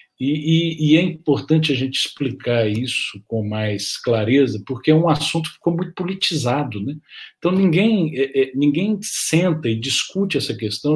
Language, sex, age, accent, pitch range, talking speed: Portuguese, male, 50-69, Brazilian, 125-175 Hz, 165 wpm